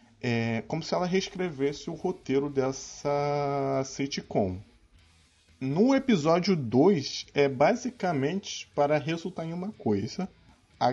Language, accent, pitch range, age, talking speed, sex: Portuguese, Brazilian, 105-145 Hz, 20-39, 105 wpm, male